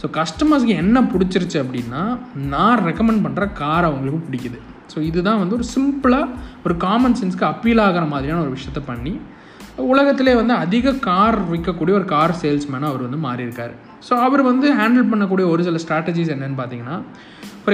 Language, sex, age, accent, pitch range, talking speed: Tamil, male, 20-39, native, 140-205 Hz, 160 wpm